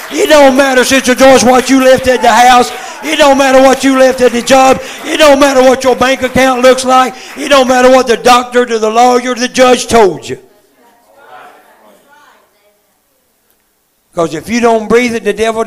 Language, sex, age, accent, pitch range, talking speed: English, male, 60-79, American, 200-245 Hz, 195 wpm